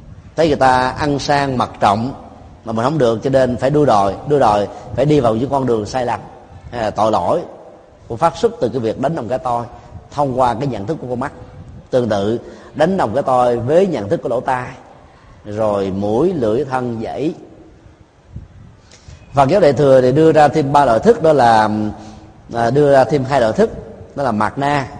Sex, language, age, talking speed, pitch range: male, Vietnamese, 30-49, 205 wpm, 110-145 Hz